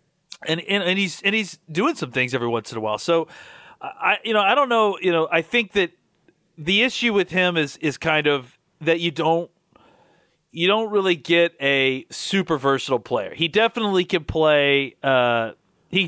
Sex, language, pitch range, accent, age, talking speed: male, English, 140-175 Hz, American, 30-49, 190 wpm